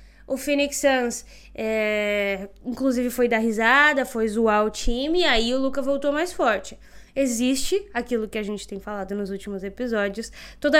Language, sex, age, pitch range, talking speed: Portuguese, female, 10-29, 225-285 Hz, 160 wpm